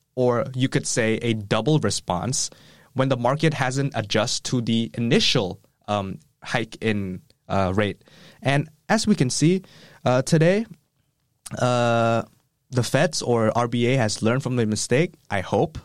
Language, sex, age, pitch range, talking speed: English, male, 20-39, 110-140 Hz, 150 wpm